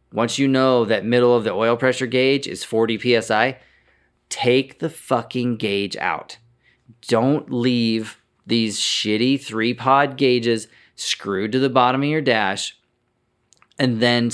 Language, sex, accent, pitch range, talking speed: English, male, American, 110-130 Hz, 140 wpm